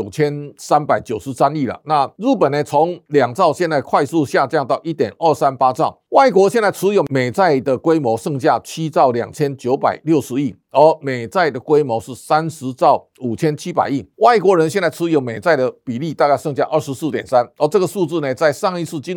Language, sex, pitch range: Chinese, male, 135-175 Hz